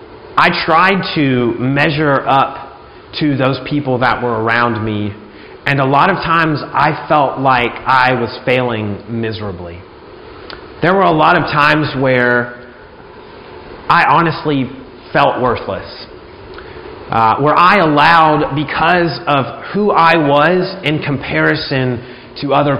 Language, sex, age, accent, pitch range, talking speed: English, male, 30-49, American, 125-155 Hz, 125 wpm